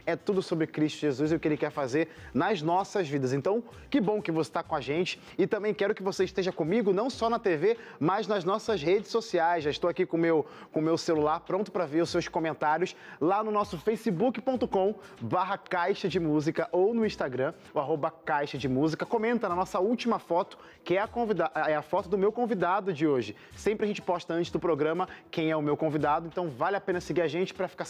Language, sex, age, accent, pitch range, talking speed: Portuguese, male, 20-39, Brazilian, 155-200 Hz, 225 wpm